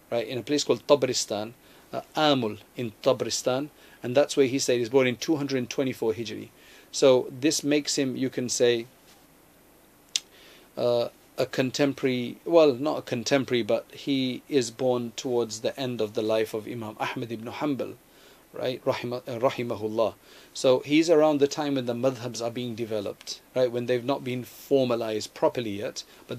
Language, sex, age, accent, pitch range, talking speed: English, male, 40-59, South African, 115-140 Hz, 165 wpm